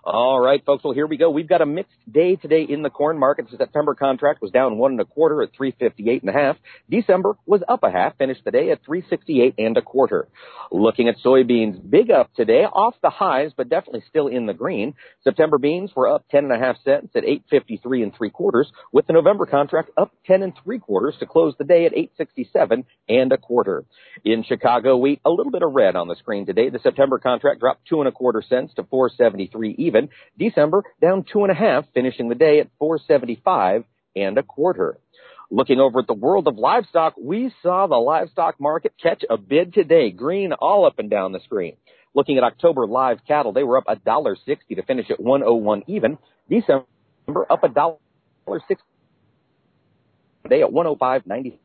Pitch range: 130-195 Hz